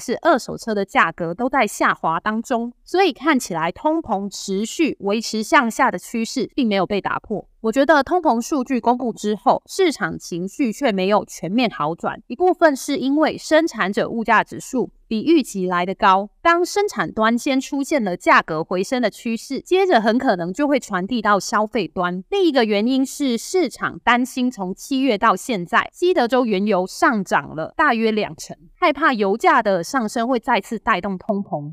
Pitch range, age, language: 200-280 Hz, 20-39, Chinese